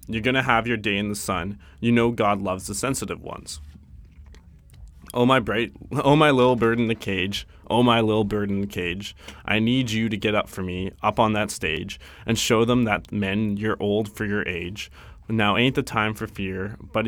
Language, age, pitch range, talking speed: English, 20-39, 95-115 Hz, 220 wpm